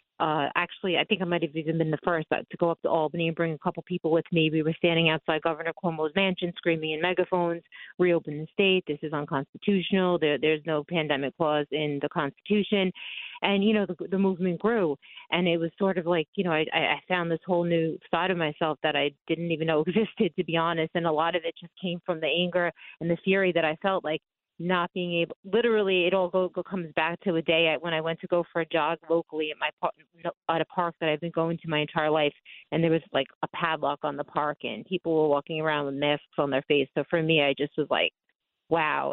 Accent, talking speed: American, 245 wpm